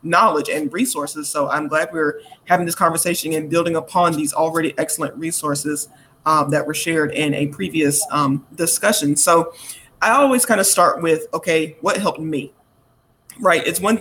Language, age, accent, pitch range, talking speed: English, 30-49, American, 155-185 Hz, 170 wpm